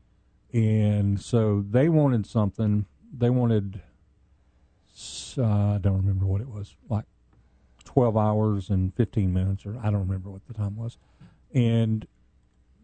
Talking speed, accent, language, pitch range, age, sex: 135 wpm, American, English, 95-115 Hz, 40-59, male